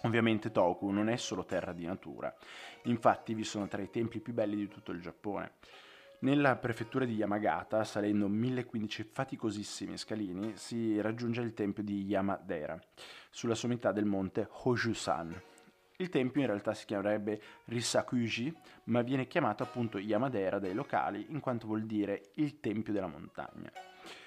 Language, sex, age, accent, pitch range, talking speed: Italian, male, 20-39, native, 105-125 Hz, 150 wpm